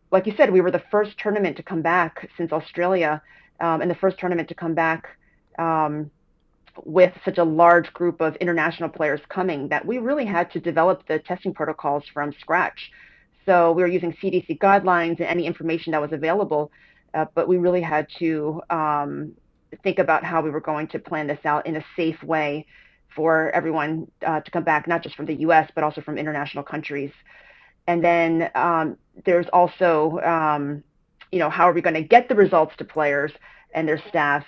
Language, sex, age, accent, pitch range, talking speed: English, female, 30-49, American, 155-180 Hz, 195 wpm